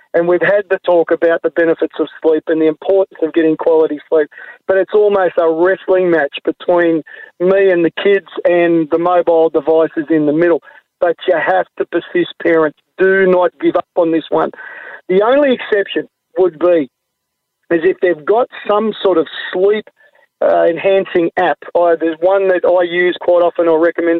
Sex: male